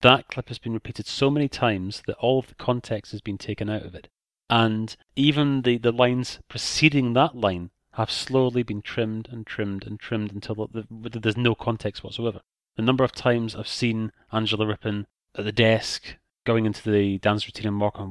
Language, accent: English, British